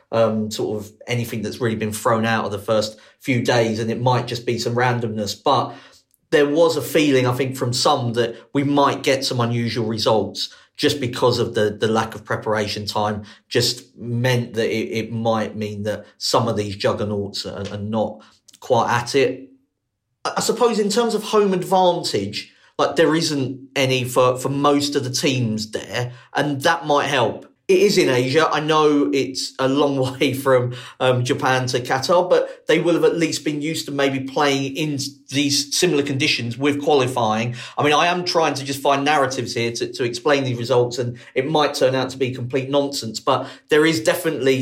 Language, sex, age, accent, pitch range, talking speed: English, male, 40-59, British, 120-145 Hz, 195 wpm